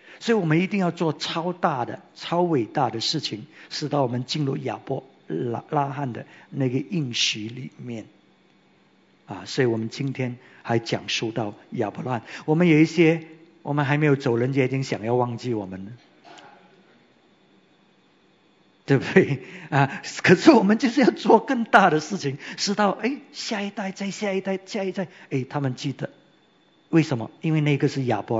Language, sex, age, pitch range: English, male, 50-69, 130-180 Hz